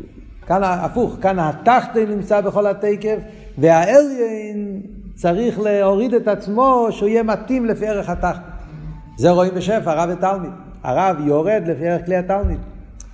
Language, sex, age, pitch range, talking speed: Hebrew, male, 50-69, 135-190 Hz, 130 wpm